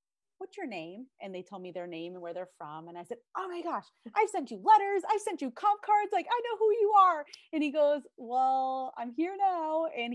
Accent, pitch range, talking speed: American, 175-235 Hz, 250 wpm